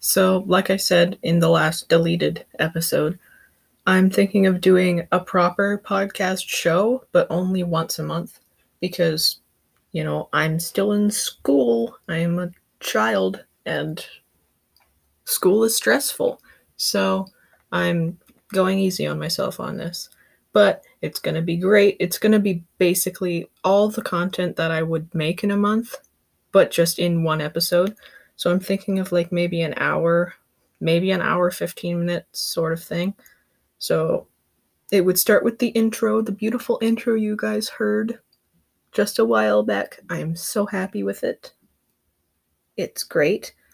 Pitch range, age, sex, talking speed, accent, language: 165-195 Hz, 20-39, female, 150 wpm, American, English